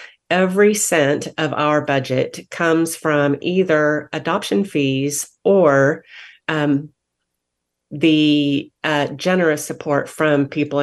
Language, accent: English, American